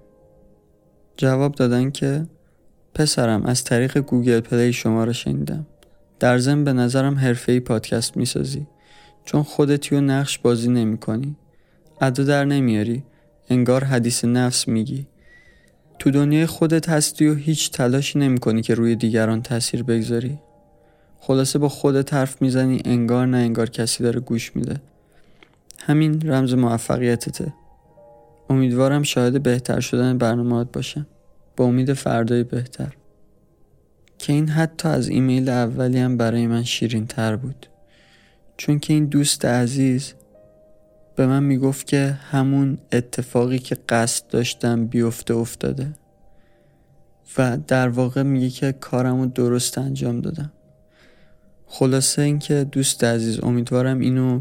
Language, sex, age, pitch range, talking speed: Persian, male, 20-39, 120-140 Hz, 125 wpm